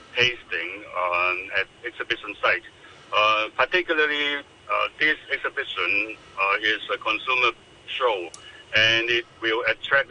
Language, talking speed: English, 115 wpm